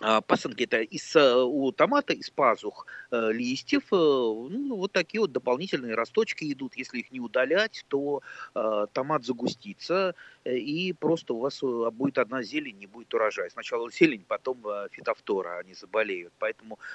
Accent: native